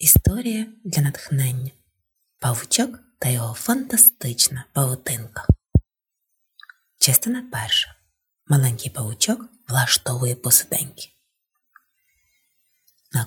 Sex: female